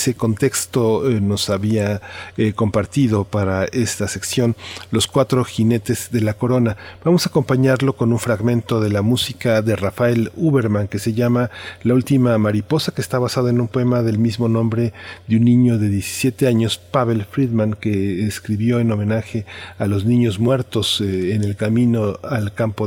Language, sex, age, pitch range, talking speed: Spanish, male, 40-59, 100-120 Hz, 170 wpm